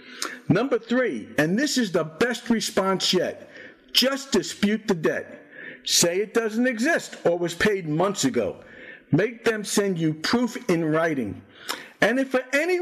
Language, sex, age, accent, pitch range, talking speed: English, male, 50-69, American, 185-255 Hz, 155 wpm